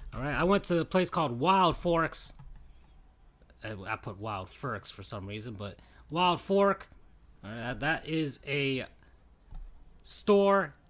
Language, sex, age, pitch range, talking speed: English, male, 30-49, 105-175 Hz, 150 wpm